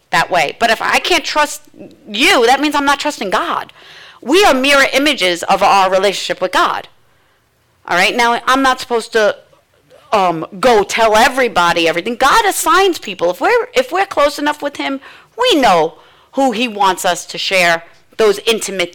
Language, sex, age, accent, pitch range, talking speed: English, female, 40-59, American, 215-285 Hz, 175 wpm